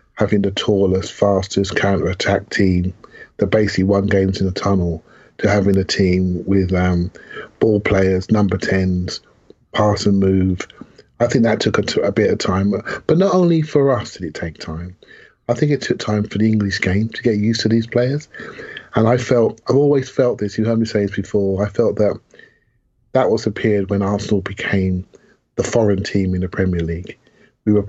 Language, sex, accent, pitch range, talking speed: English, male, British, 90-105 Hz, 195 wpm